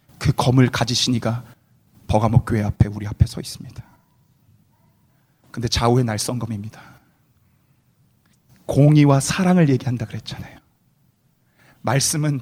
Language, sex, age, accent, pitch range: Korean, male, 30-49, native, 125-185 Hz